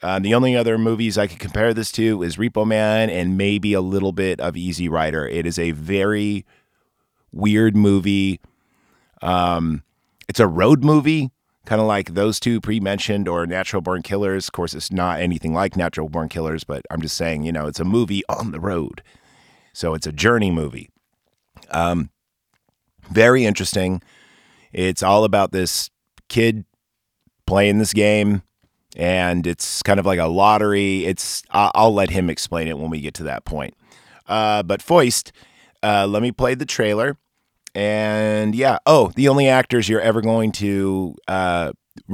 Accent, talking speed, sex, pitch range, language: American, 170 wpm, male, 85-110 Hz, English